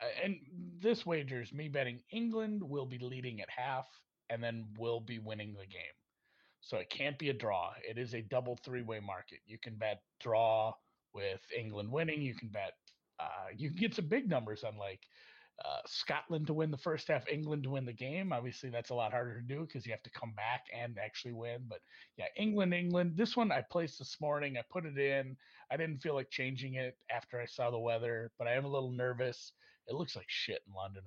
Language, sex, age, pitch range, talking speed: English, male, 30-49, 110-145 Hz, 220 wpm